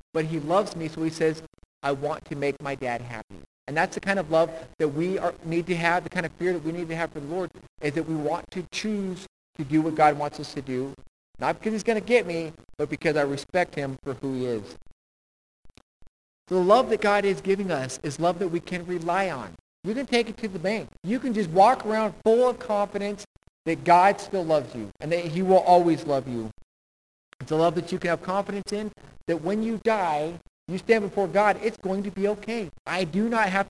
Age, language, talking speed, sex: 50-69, English, 240 wpm, male